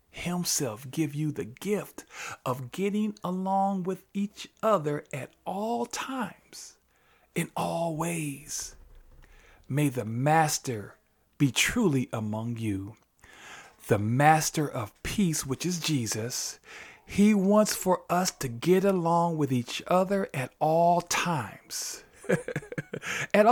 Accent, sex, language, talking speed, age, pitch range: American, male, English, 115 wpm, 40-59, 140-195 Hz